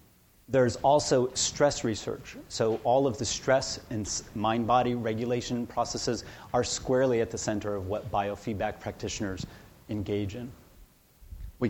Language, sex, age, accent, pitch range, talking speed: English, male, 30-49, American, 105-125 Hz, 130 wpm